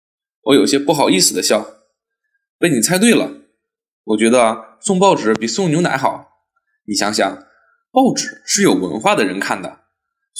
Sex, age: male, 20-39